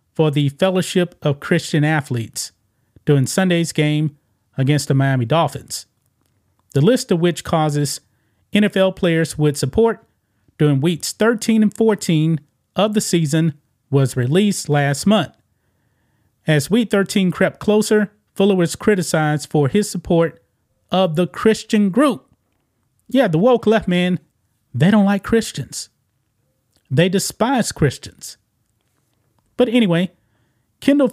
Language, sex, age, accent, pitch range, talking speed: English, male, 30-49, American, 135-190 Hz, 125 wpm